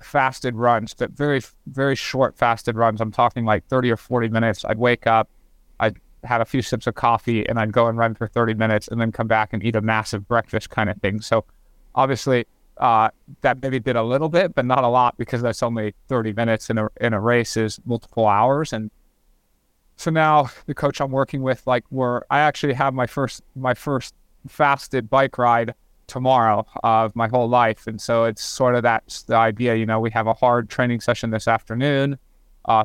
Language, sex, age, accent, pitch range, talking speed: English, male, 30-49, American, 115-130 Hz, 215 wpm